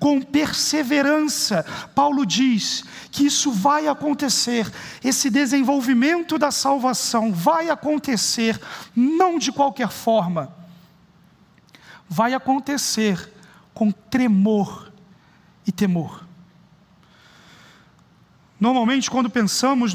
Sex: male